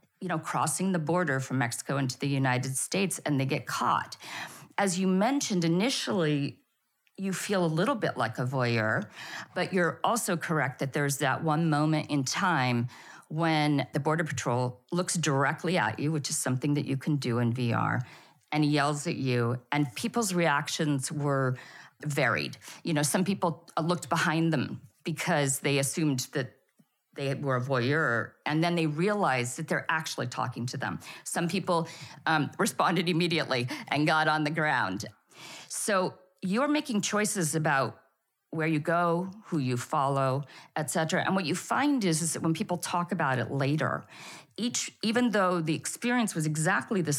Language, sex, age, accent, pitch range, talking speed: English, female, 50-69, American, 135-175 Hz, 170 wpm